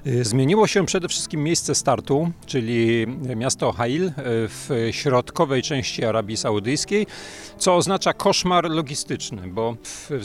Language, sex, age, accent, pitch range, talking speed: Polish, male, 40-59, native, 115-155 Hz, 125 wpm